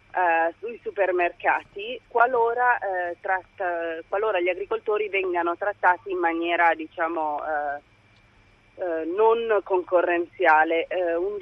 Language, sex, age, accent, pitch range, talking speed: Italian, female, 30-49, native, 170-215 Hz, 75 wpm